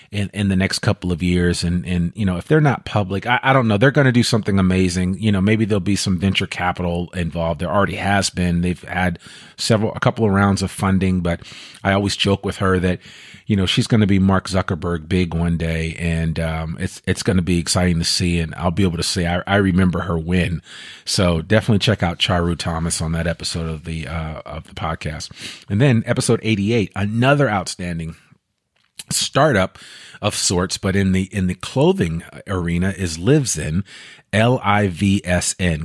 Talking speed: 205 wpm